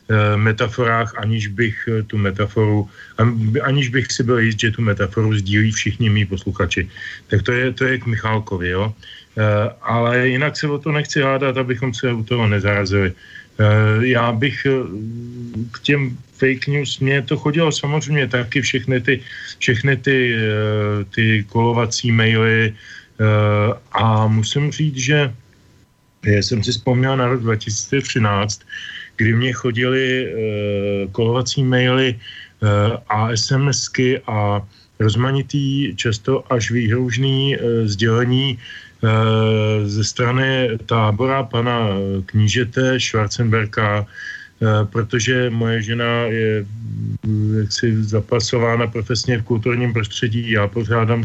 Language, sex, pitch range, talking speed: Slovak, male, 105-125 Hz, 120 wpm